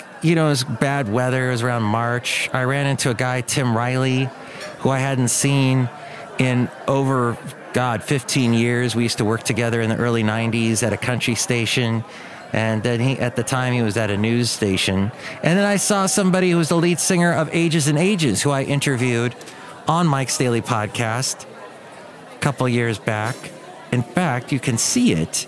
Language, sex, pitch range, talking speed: English, male, 115-140 Hz, 195 wpm